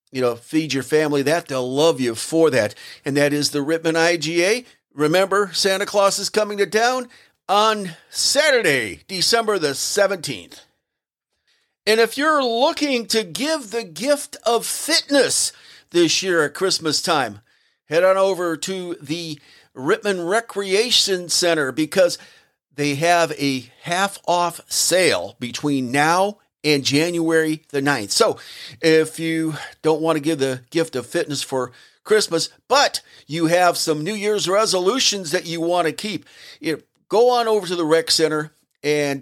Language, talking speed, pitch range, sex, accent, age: English, 150 wpm, 145-200 Hz, male, American, 50-69